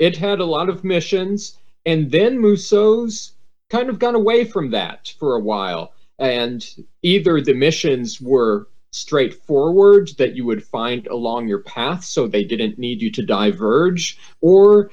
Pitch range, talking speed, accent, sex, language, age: 110-185 Hz, 155 wpm, American, male, English, 40-59